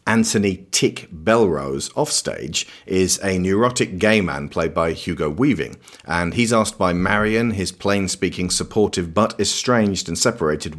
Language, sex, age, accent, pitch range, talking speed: English, male, 40-59, British, 90-115 Hz, 145 wpm